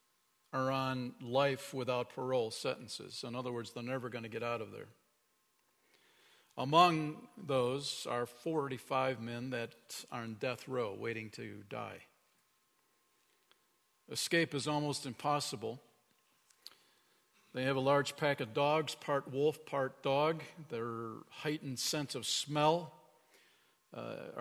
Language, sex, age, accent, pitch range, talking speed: English, male, 50-69, American, 125-160 Hz, 125 wpm